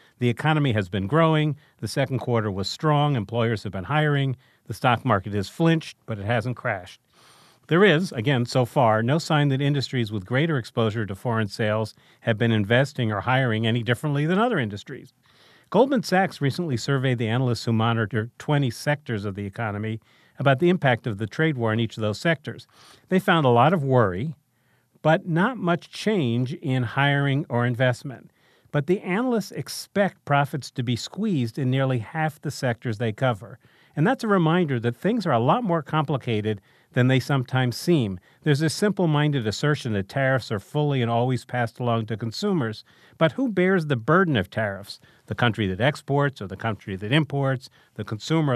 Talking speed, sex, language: 185 wpm, male, English